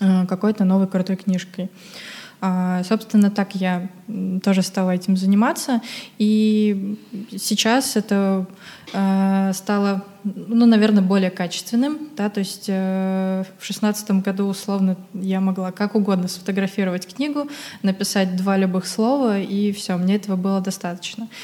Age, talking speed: 20-39, 120 wpm